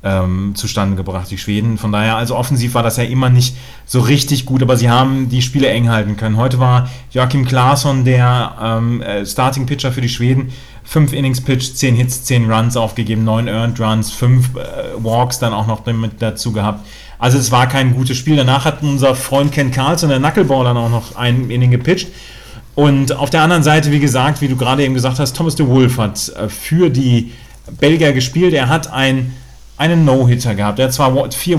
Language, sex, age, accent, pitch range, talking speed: German, male, 30-49, German, 120-140 Hz, 205 wpm